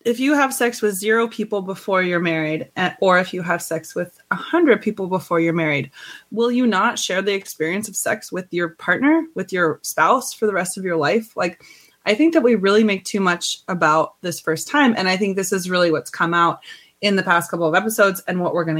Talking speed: 235 wpm